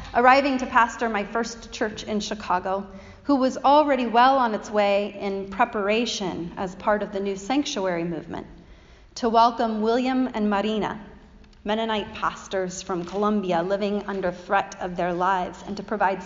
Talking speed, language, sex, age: 155 wpm, English, female, 30-49